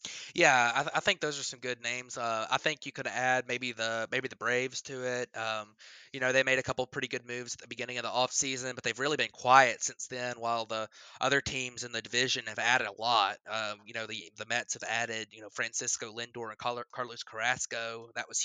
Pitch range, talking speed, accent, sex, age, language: 115-125 Hz, 245 wpm, American, male, 20-39, English